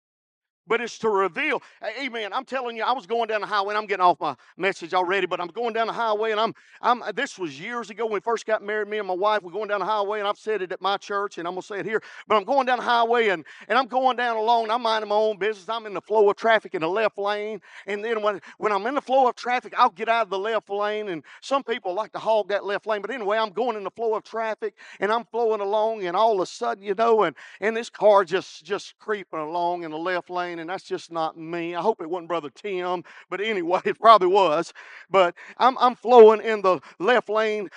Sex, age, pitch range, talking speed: male, 50-69, 195-230 Hz, 275 wpm